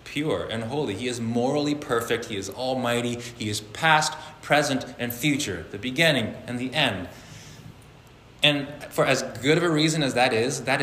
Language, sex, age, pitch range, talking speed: English, male, 20-39, 110-145 Hz, 175 wpm